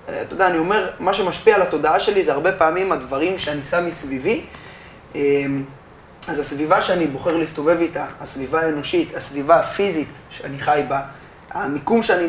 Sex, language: male, Hebrew